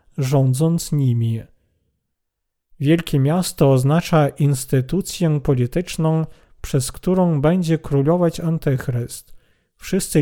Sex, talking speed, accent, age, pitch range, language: male, 75 wpm, native, 40-59, 135-170 Hz, Polish